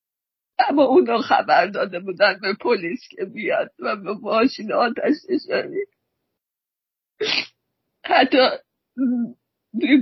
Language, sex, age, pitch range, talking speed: Persian, female, 40-59, 225-340 Hz, 95 wpm